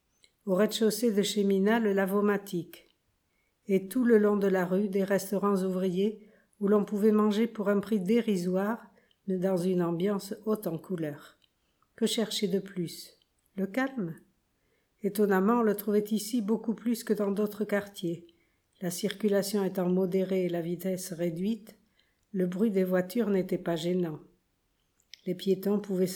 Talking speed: 155 wpm